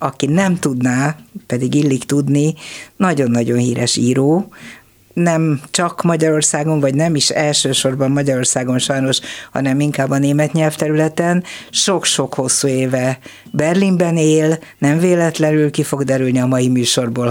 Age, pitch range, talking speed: 50-69, 130-160 Hz, 125 wpm